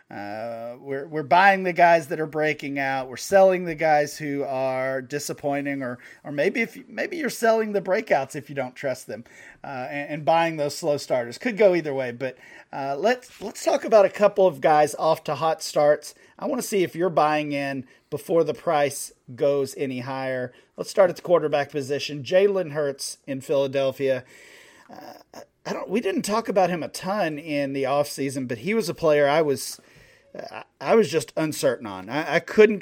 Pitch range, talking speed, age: 140-175 Hz, 200 wpm, 40-59